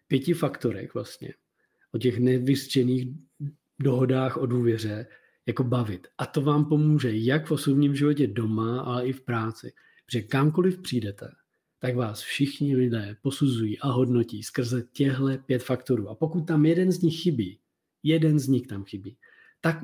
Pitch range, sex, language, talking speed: 120-140 Hz, male, Czech, 155 wpm